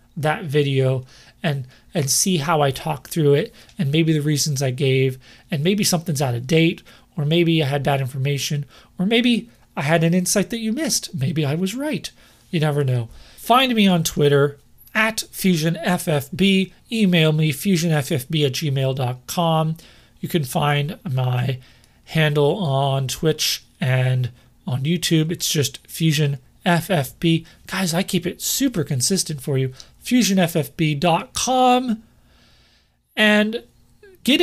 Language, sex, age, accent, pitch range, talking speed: English, male, 30-49, American, 140-180 Hz, 140 wpm